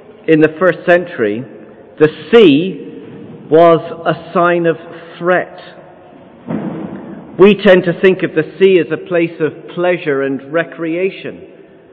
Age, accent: 40-59, British